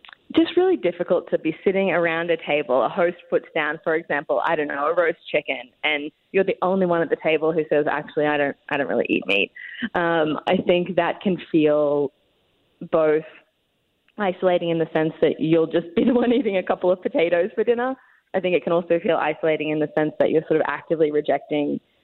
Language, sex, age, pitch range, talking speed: English, female, 20-39, 155-195 Hz, 215 wpm